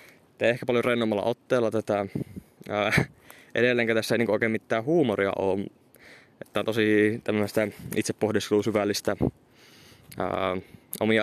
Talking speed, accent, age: 100 wpm, native, 20-39